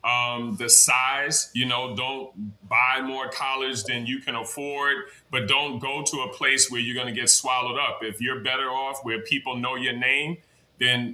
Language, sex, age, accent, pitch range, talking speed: English, male, 30-49, American, 120-140 Hz, 195 wpm